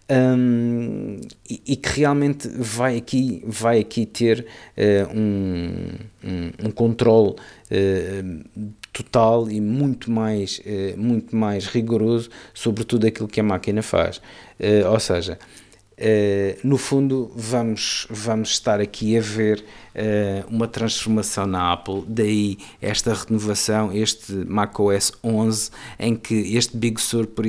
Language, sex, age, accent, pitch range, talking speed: Portuguese, male, 50-69, Portuguese, 100-115 Hz, 130 wpm